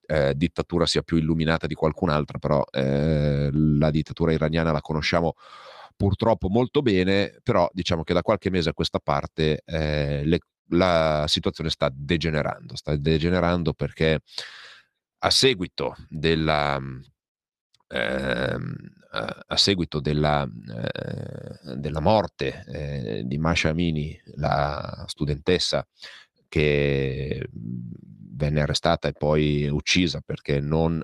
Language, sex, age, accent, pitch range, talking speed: Italian, male, 40-59, native, 70-85 Hz, 115 wpm